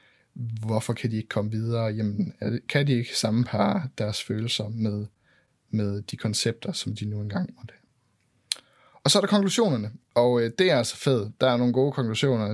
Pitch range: 110-135 Hz